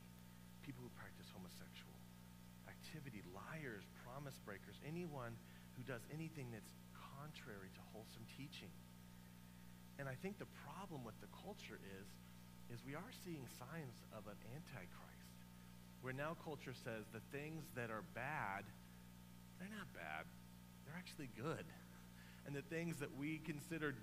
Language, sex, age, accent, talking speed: English, male, 40-59, American, 135 wpm